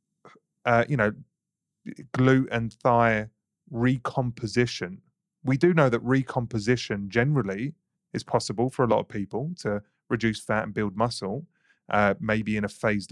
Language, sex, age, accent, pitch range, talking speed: English, male, 30-49, British, 105-125 Hz, 140 wpm